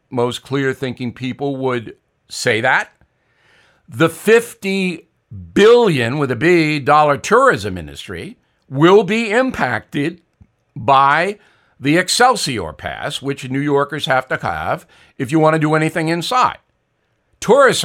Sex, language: male, English